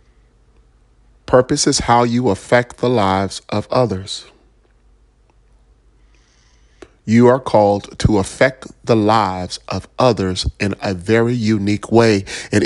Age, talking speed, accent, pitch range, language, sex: 40-59, 115 wpm, American, 100-125 Hz, English, male